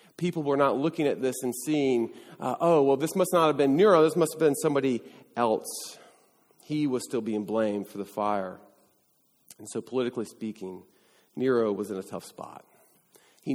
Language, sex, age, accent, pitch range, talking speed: English, male, 40-59, American, 110-150 Hz, 185 wpm